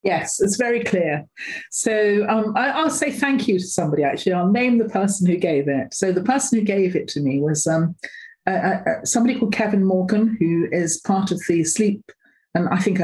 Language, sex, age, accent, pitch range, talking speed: English, female, 40-59, British, 160-220 Hz, 205 wpm